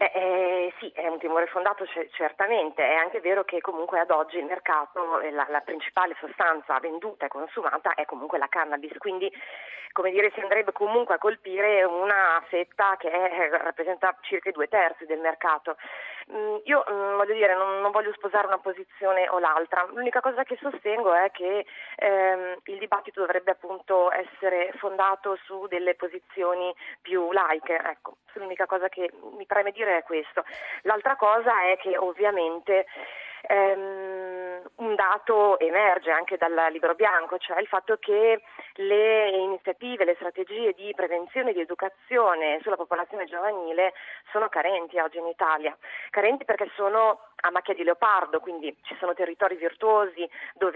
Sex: female